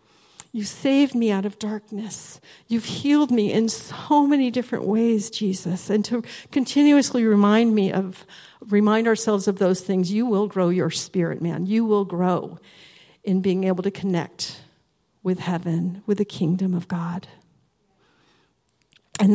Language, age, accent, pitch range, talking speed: English, 50-69, American, 185-230 Hz, 150 wpm